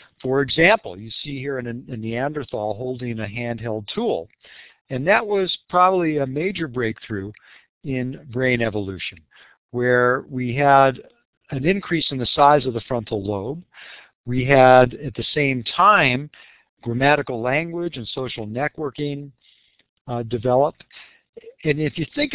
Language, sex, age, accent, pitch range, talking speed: English, male, 60-79, American, 115-155 Hz, 140 wpm